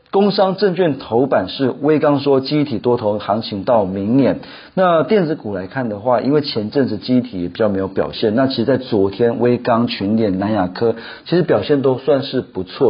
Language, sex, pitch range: Chinese, male, 105-135 Hz